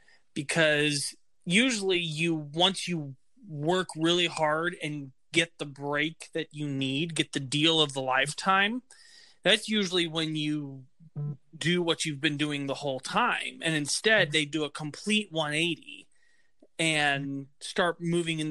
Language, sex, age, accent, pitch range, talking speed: English, male, 20-39, American, 145-175 Hz, 145 wpm